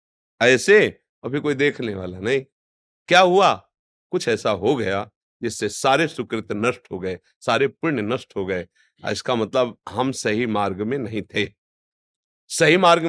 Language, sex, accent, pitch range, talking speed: Hindi, male, native, 120-170 Hz, 150 wpm